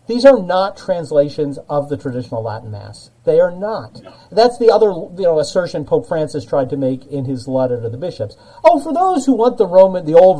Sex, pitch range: male, 130-220 Hz